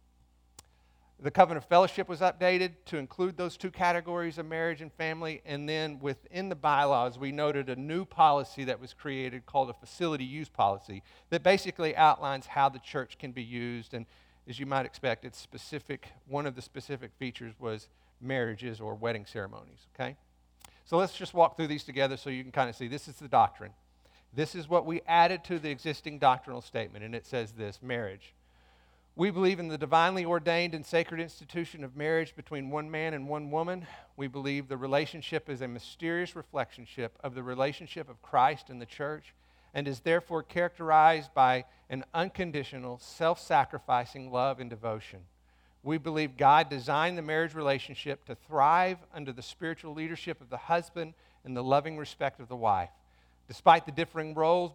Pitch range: 125-165 Hz